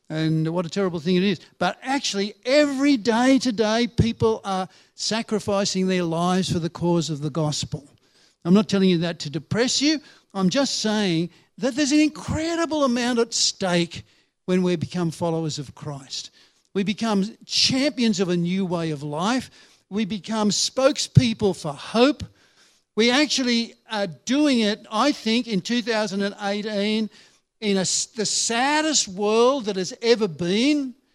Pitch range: 175-235 Hz